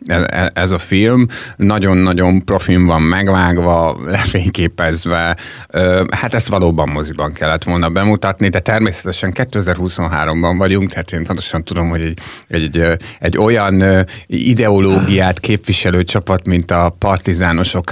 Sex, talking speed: male, 115 wpm